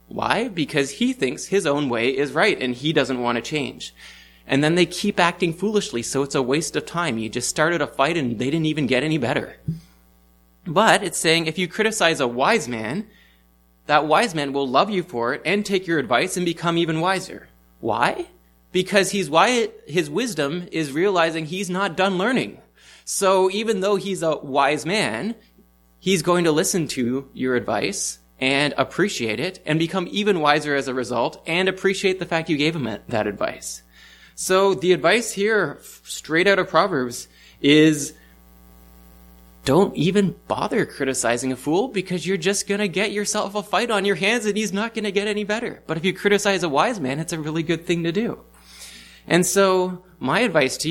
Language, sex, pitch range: English, male, 125-195 Hz